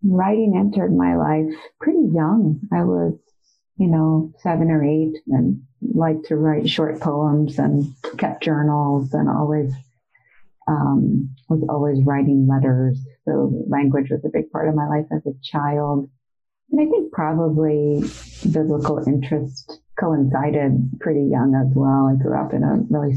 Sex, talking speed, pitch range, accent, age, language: female, 150 wpm, 135-160 Hz, American, 40-59, English